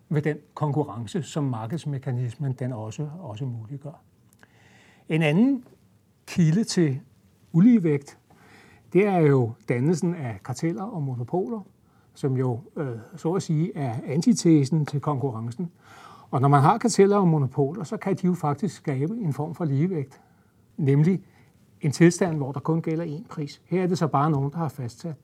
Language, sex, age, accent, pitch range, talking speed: Danish, male, 60-79, native, 130-170 Hz, 160 wpm